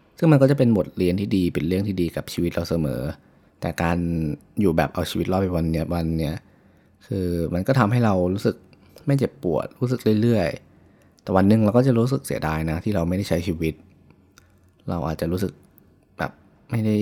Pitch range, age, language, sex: 80-100 Hz, 20-39, Thai, male